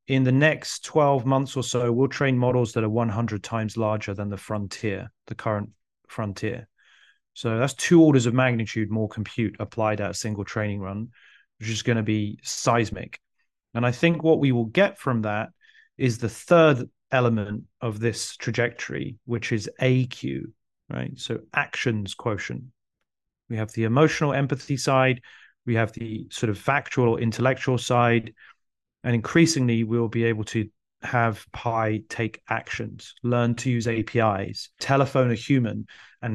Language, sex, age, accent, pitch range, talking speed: English, male, 30-49, British, 110-130 Hz, 155 wpm